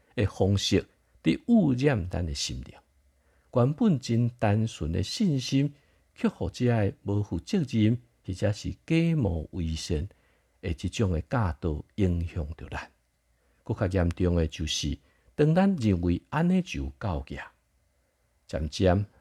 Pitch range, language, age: 75-110 Hz, Chinese, 50-69